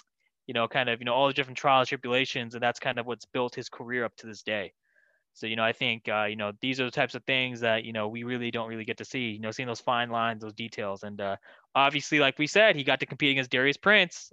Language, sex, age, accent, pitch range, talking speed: English, male, 20-39, American, 110-135 Hz, 285 wpm